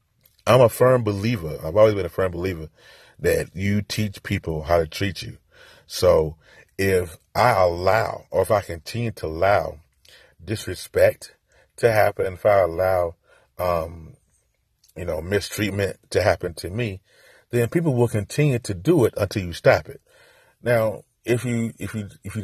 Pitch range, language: 90-110 Hz, English